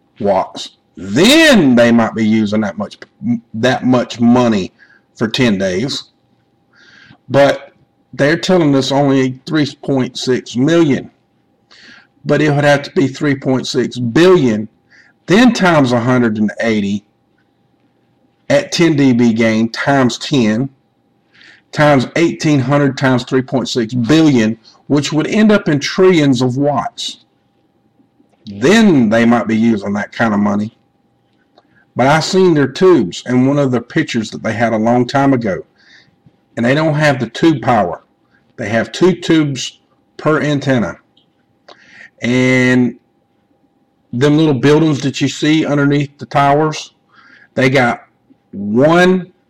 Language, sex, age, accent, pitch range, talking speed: English, male, 50-69, American, 120-150 Hz, 125 wpm